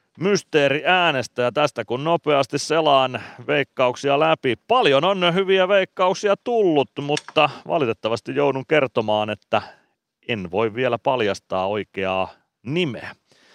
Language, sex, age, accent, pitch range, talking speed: Finnish, male, 30-49, native, 105-145 Hz, 110 wpm